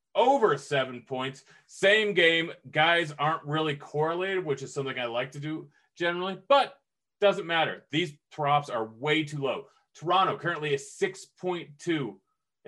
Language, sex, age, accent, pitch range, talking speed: English, male, 30-49, American, 125-160 Hz, 140 wpm